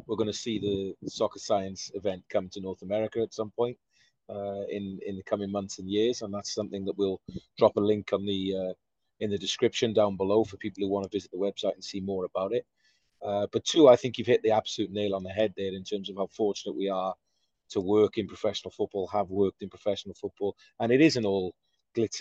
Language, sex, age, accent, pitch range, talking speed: English, male, 30-49, British, 95-105 Hz, 240 wpm